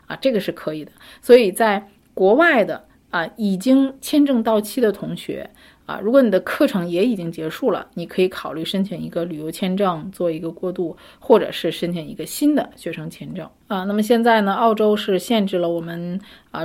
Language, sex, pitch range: Chinese, female, 180-225 Hz